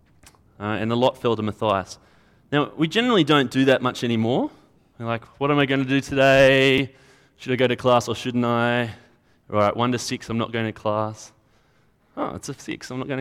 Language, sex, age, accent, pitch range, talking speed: English, male, 20-39, Australian, 110-140 Hz, 225 wpm